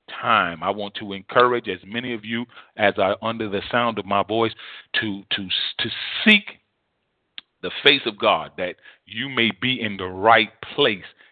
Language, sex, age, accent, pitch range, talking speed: English, male, 40-59, American, 90-115 Hz, 175 wpm